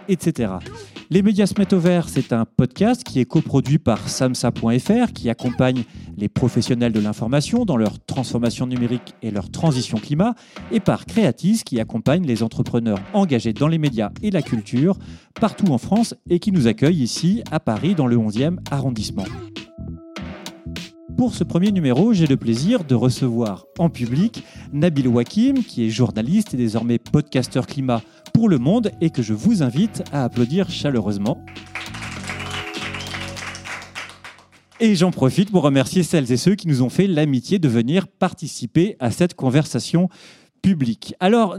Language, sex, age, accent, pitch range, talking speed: French, male, 40-59, French, 120-190 Hz, 155 wpm